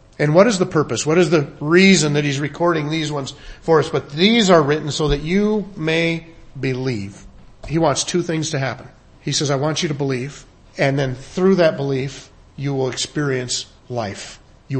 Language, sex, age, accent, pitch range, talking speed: English, male, 40-59, American, 130-175 Hz, 195 wpm